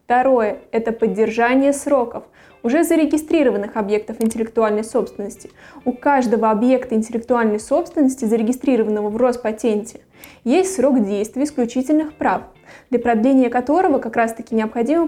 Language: Russian